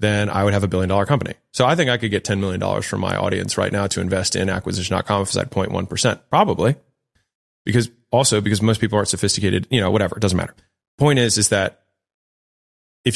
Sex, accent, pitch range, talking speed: male, American, 95-115 Hz, 220 wpm